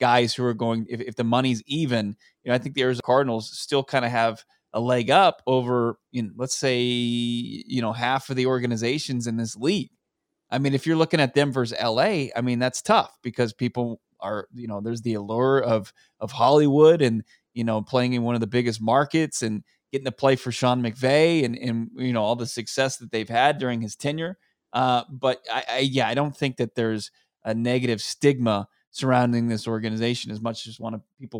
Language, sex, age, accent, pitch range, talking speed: English, male, 20-39, American, 115-135 Hz, 215 wpm